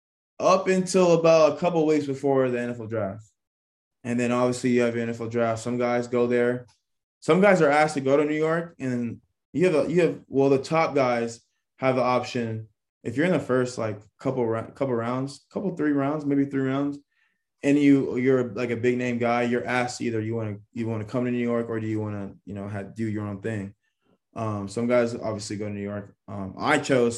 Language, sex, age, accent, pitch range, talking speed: English, male, 20-39, American, 110-140 Hz, 230 wpm